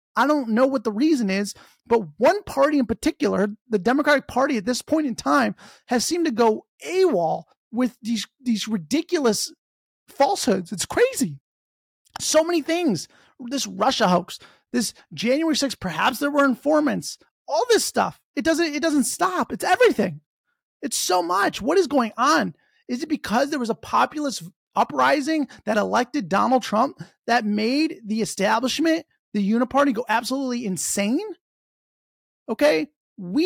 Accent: American